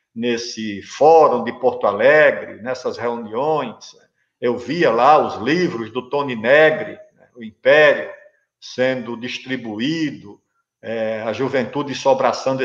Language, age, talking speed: Portuguese, 50-69, 115 wpm